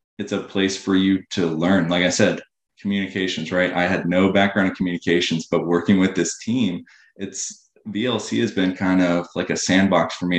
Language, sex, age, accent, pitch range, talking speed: English, male, 20-39, American, 85-95 Hz, 195 wpm